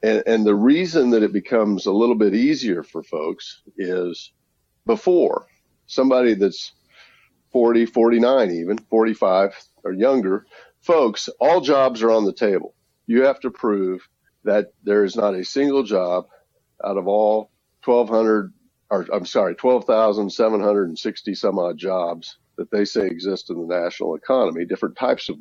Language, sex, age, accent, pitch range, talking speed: English, male, 50-69, American, 95-120 Hz, 150 wpm